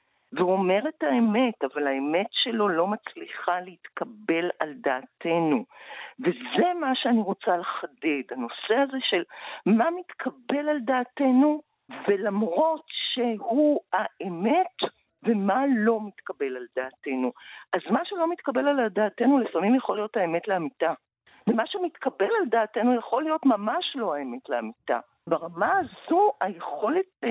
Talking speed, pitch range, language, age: 125 wpm, 185-275 Hz, Hebrew, 50-69